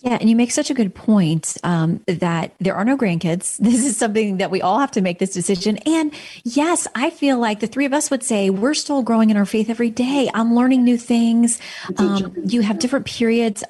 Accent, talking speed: American, 230 wpm